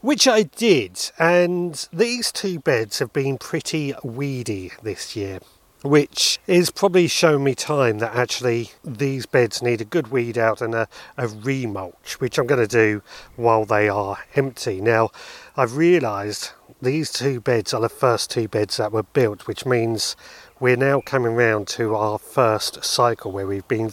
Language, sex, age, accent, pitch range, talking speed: English, male, 40-59, British, 110-150 Hz, 170 wpm